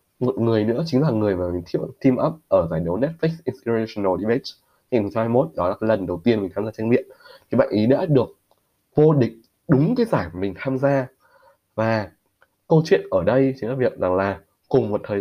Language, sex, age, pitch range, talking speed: Vietnamese, male, 20-39, 95-135 Hz, 215 wpm